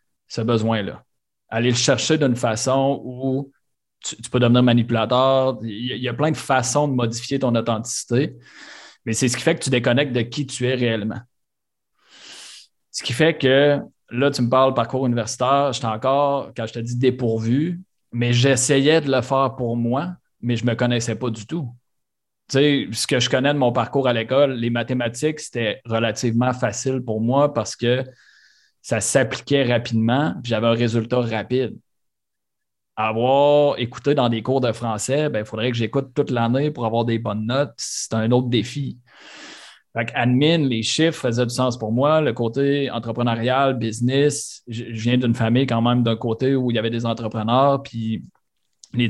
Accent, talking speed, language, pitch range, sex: Canadian, 180 wpm, French, 115-135 Hz, male